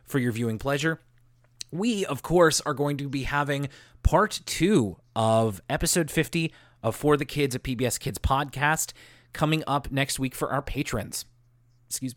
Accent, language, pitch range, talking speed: American, English, 120-150 Hz, 165 wpm